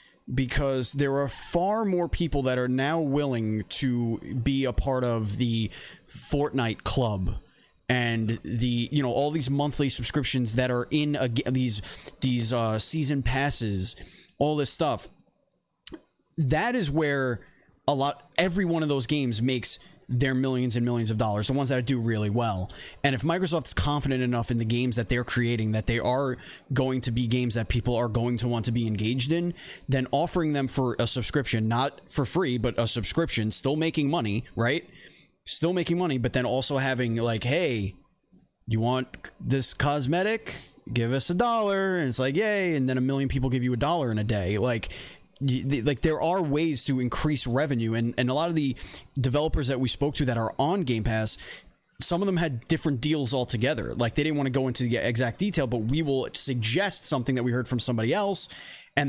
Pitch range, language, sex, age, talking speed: 120-145 Hz, English, male, 20-39, 195 wpm